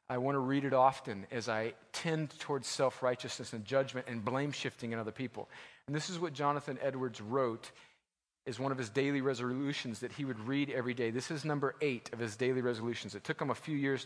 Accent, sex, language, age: American, male, English, 40-59